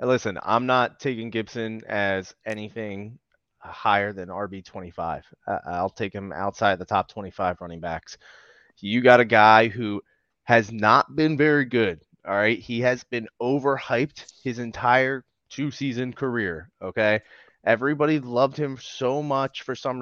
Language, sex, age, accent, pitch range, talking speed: English, male, 20-39, American, 110-140 Hz, 140 wpm